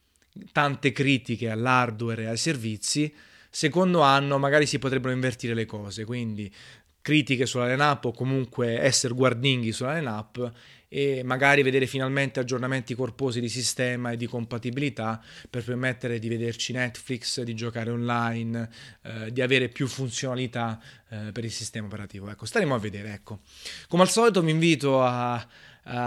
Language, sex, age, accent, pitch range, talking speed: Italian, male, 20-39, native, 115-140 Hz, 150 wpm